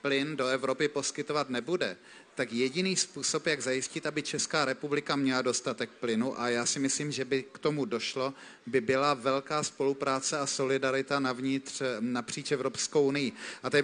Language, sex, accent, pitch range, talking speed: Czech, male, native, 130-155 Hz, 160 wpm